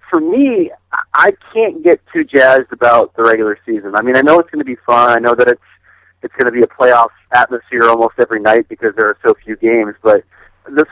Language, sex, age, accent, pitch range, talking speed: English, male, 40-59, American, 105-145 Hz, 230 wpm